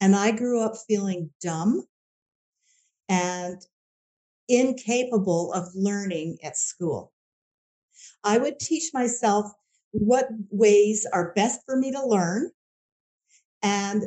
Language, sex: English, female